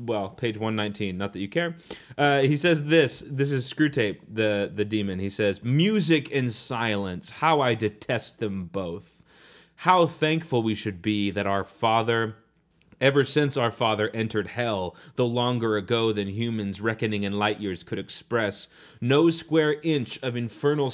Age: 30-49